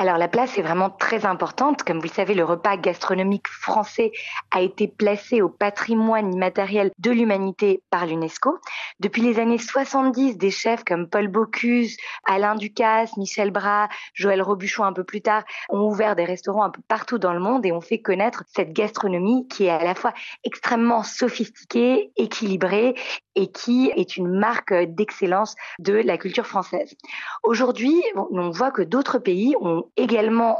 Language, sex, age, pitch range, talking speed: French, female, 30-49, 185-225 Hz, 170 wpm